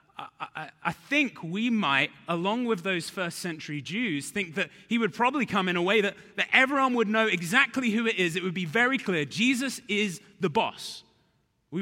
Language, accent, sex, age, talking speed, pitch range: English, British, male, 30-49, 205 wpm, 130-200 Hz